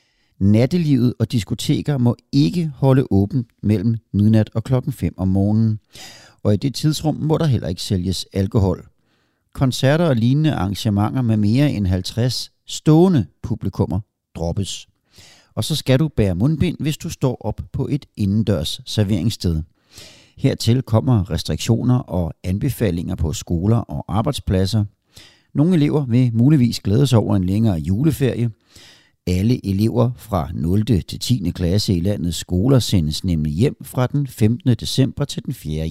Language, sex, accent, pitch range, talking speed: Danish, male, native, 95-130 Hz, 145 wpm